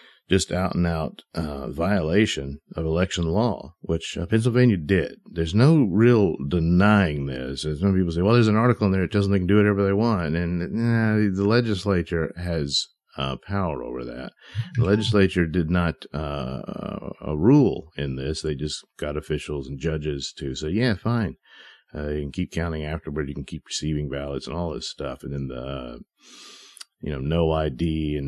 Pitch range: 75-100 Hz